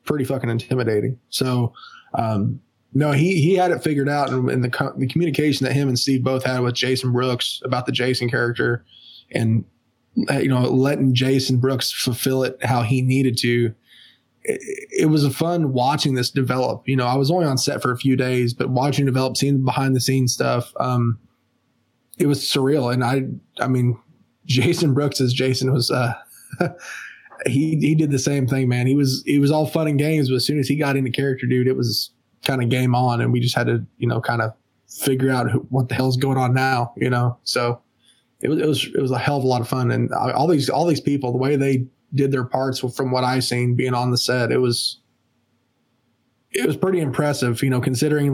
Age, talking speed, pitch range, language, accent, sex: 20-39, 220 wpm, 120-135 Hz, English, American, male